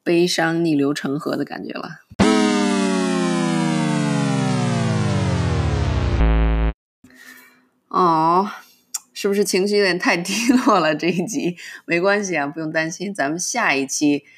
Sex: female